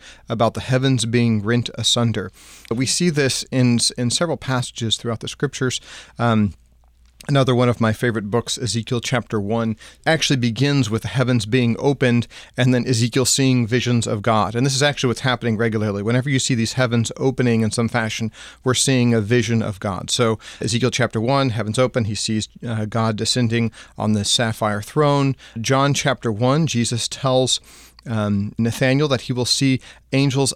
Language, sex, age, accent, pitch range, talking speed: English, male, 40-59, American, 110-130 Hz, 175 wpm